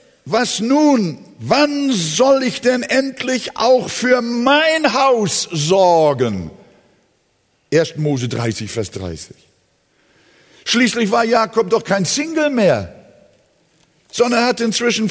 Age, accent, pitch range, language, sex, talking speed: 50-69, German, 180-240 Hz, German, male, 110 wpm